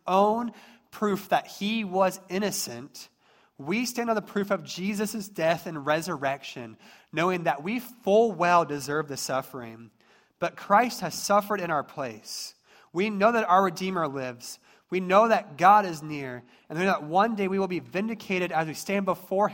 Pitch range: 145-200 Hz